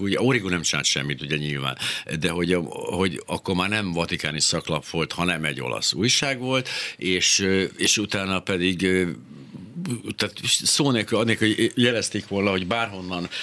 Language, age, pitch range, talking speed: Hungarian, 60-79, 85-110 Hz, 150 wpm